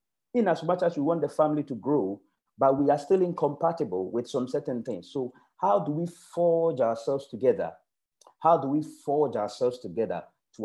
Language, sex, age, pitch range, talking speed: English, male, 40-59, 115-160 Hz, 185 wpm